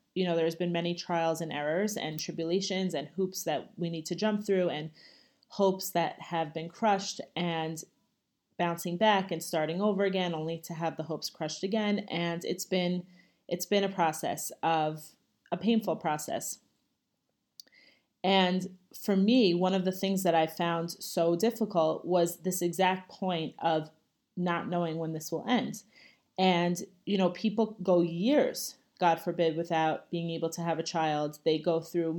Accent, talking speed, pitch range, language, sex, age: American, 170 wpm, 165-190 Hz, English, female, 30-49